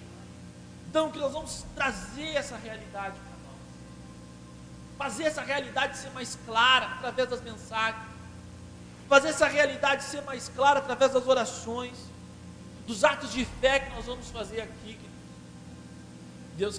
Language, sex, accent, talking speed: Portuguese, male, Brazilian, 130 wpm